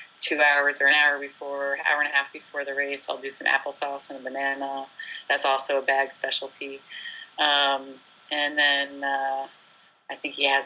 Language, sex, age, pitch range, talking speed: English, female, 30-49, 140-165 Hz, 185 wpm